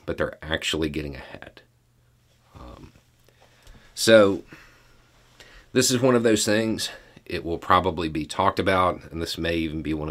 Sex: male